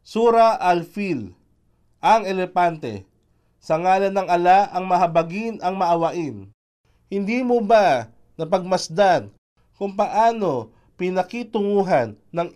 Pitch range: 155-200 Hz